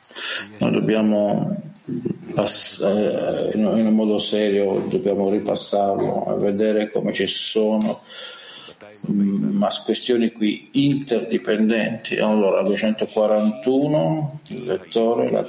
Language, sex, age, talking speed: Italian, male, 50-69, 90 wpm